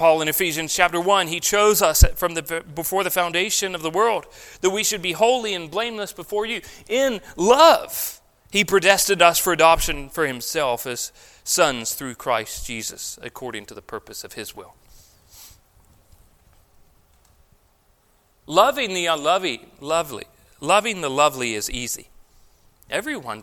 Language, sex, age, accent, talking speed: English, male, 40-59, American, 145 wpm